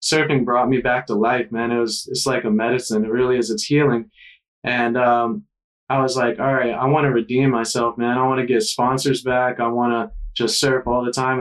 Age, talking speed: 20-39, 235 wpm